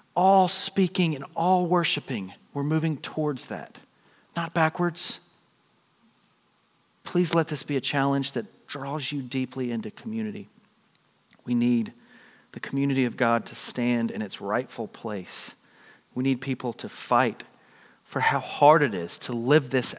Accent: American